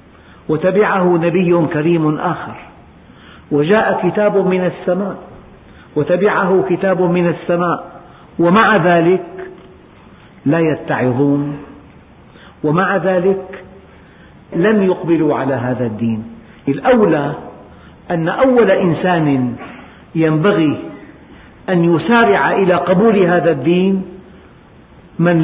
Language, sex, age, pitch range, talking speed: Arabic, male, 50-69, 155-195 Hz, 85 wpm